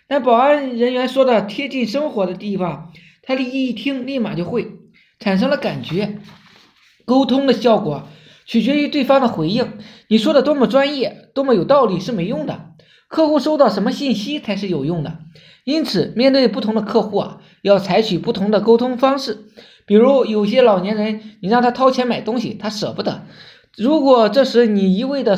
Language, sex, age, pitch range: Chinese, male, 20-39, 200-260 Hz